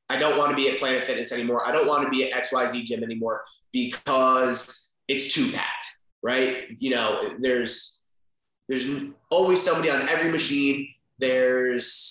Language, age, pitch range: English, 20-39, 130-150 Hz